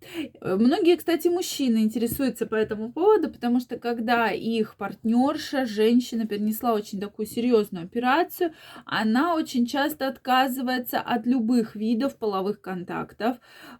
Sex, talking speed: female, 115 wpm